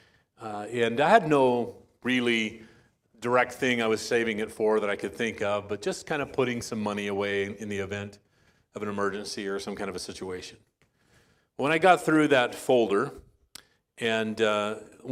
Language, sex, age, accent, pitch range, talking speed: English, male, 40-59, American, 100-120 Hz, 185 wpm